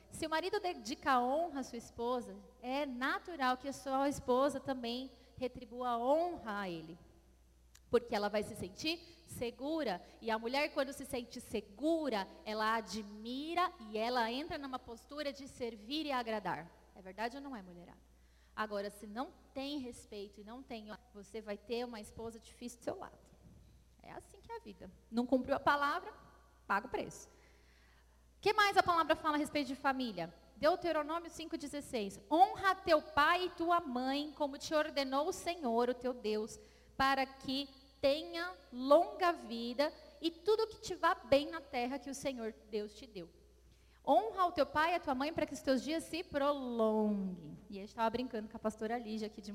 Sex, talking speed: female, 185 wpm